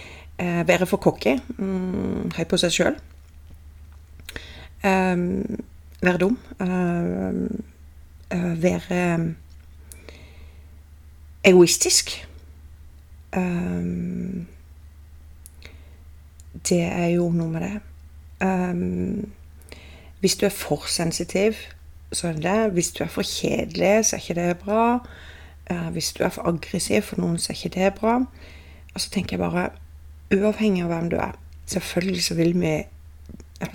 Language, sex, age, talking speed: English, female, 30-49, 130 wpm